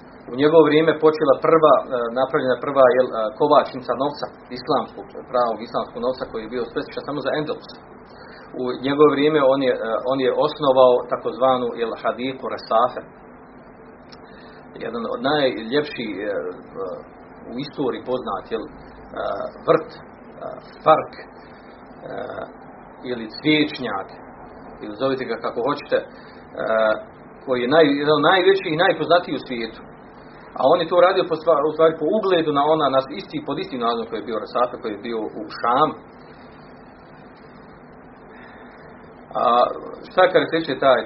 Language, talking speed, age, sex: Croatian, 125 wpm, 40-59, male